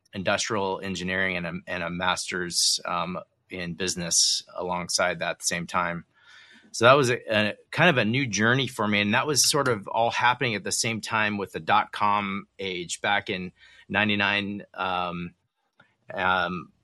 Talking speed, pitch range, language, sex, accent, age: 155 wpm, 95-115 Hz, English, male, American, 30-49